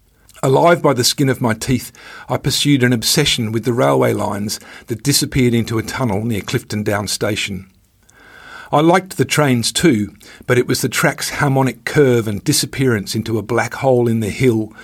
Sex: male